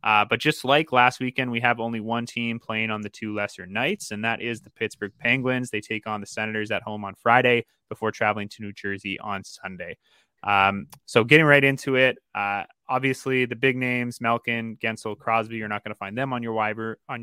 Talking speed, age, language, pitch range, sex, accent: 215 wpm, 20-39, English, 105-125 Hz, male, American